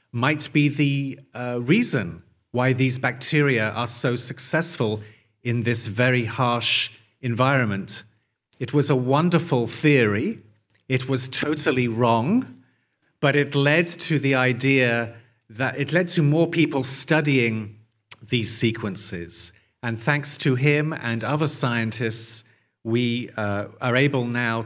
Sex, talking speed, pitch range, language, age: male, 125 wpm, 115-145 Hz, Italian, 40-59